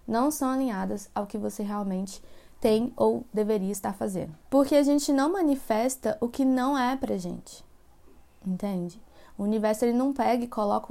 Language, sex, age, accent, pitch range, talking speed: Portuguese, female, 20-39, Brazilian, 200-250 Hz, 170 wpm